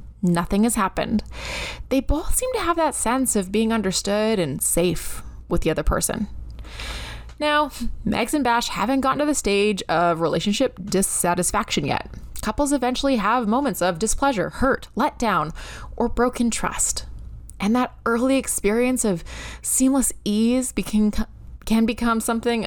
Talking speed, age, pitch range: 140 wpm, 20-39, 190-270 Hz